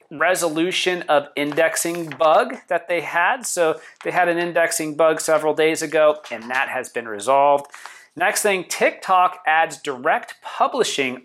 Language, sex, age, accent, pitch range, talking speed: English, male, 40-59, American, 140-170 Hz, 145 wpm